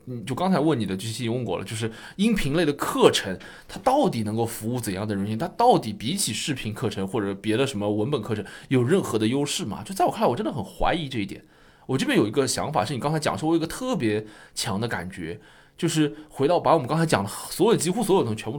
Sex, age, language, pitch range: male, 20-39, Chinese, 115-165 Hz